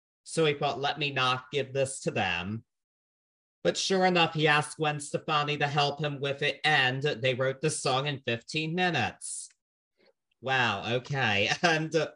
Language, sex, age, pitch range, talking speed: English, male, 40-59, 125-150 Hz, 170 wpm